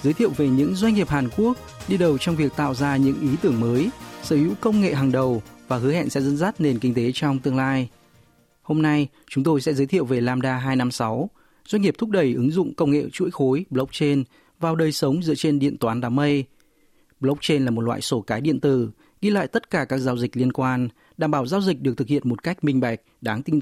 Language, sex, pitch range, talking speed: Vietnamese, male, 130-155 Hz, 245 wpm